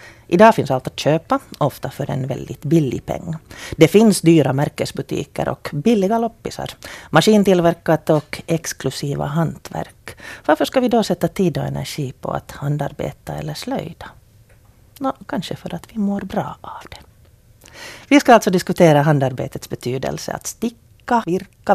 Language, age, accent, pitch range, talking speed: Finnish, 40-59, native, 145-195 Hz, 145 wpm